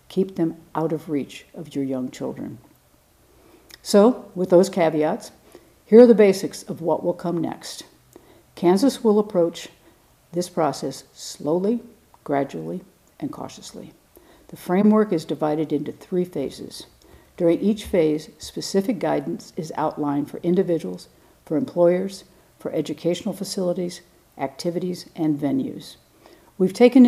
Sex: female